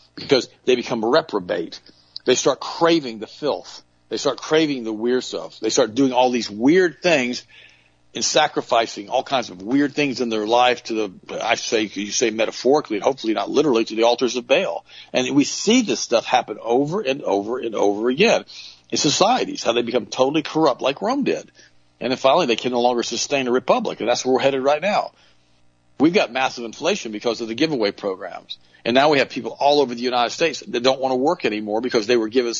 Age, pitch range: 50-69, 110-140 Hz